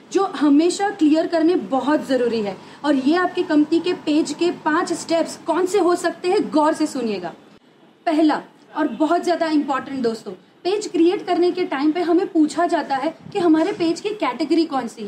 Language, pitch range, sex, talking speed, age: Hindi, 275-350 Hz, female, 185 wpm, 30-49